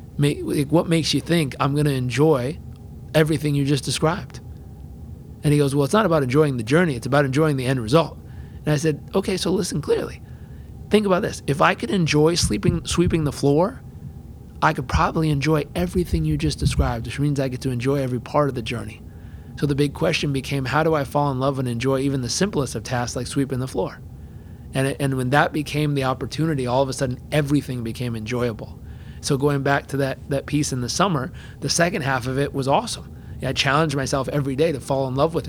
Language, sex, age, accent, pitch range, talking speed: English, male, 30-49, American, 130-150 Hz, 220 wpm